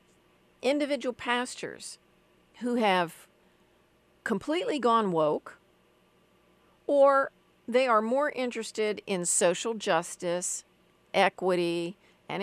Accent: American